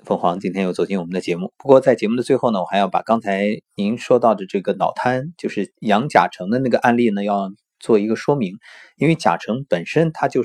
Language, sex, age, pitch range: Chinese, male, 30-49, 95-130 Hz